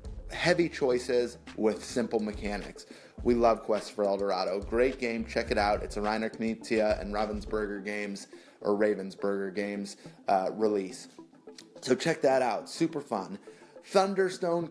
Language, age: English, 30-49